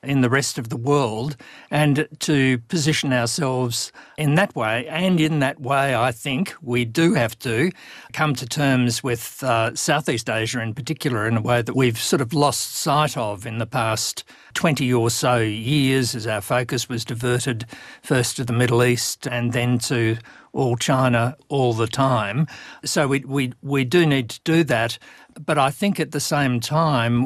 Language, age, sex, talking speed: English, 50-69, male, 185 wpm